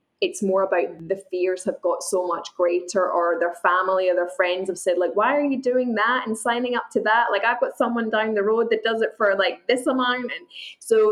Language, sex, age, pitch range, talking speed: English, female, 10-29, 180-230 Hz, 245 wpm